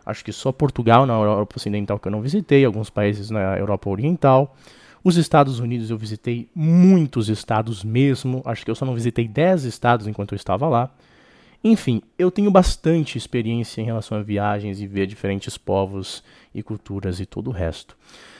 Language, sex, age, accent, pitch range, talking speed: Portuguese, male, 20-39, Brazilian, 115-160 Hz, 185 wpm